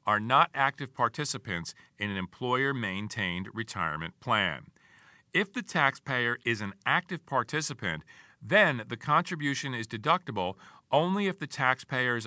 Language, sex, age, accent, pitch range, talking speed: English, male, 50-69, American, 110-150 Hz, 120 wpm